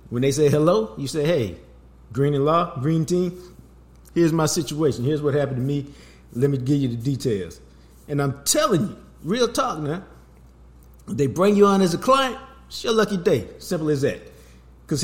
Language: English